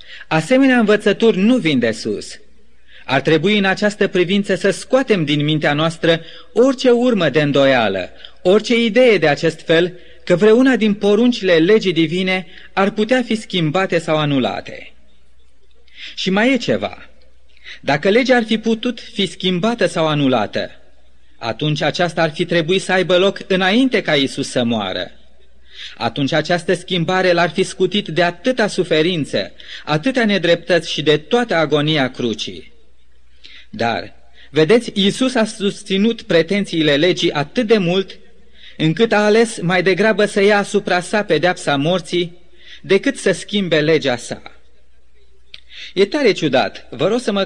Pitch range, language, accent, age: 155-210 Hz, Romanian, native, 30-49